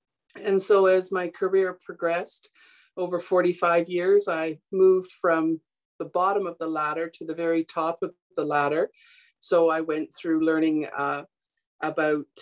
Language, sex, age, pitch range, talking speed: English, female, 50-69, 165-205 Hz, 150 wpm